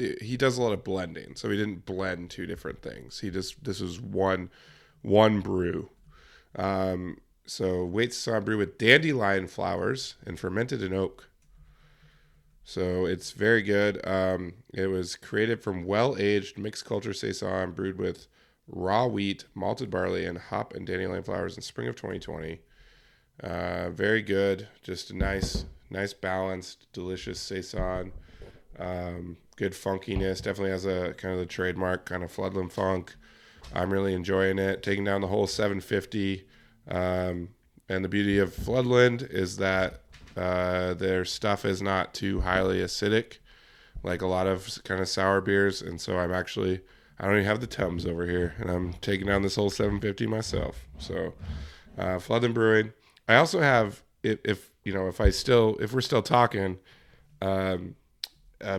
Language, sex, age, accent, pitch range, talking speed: English, male, 20-39, American, 90-105 Hz, 160 wpm